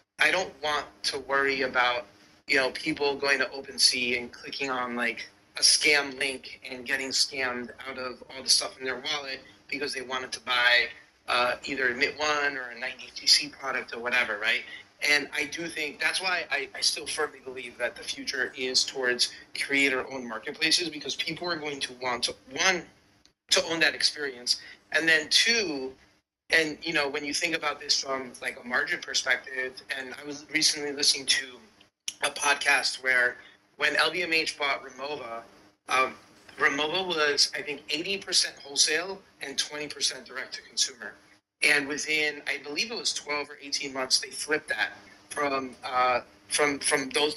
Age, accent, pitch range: 30-49, American, 130-150 Hz